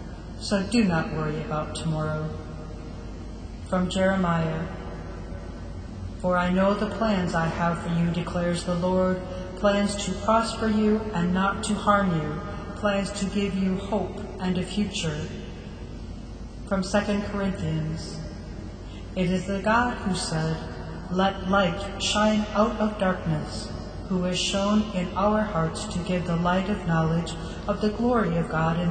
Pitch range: 160-200 Hz